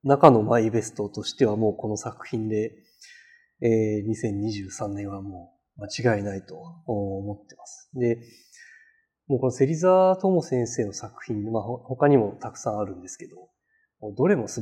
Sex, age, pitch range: male, 20-39, 110-155 Hz